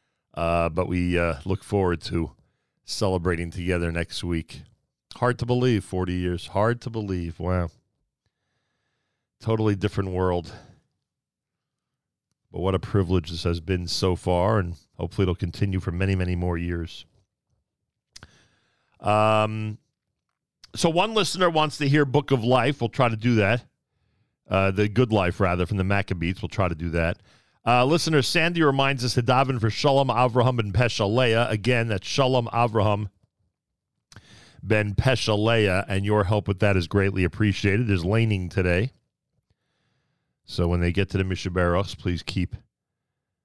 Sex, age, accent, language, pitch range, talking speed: male, 40-59, American, English, 90-120 Hz, 150 wpm